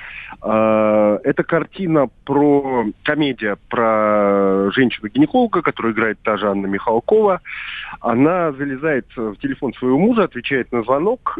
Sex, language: male, Russian